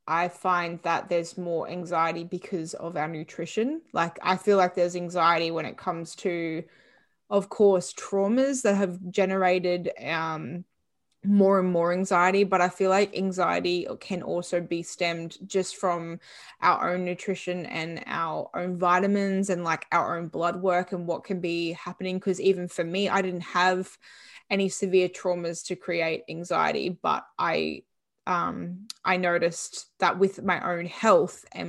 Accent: Australian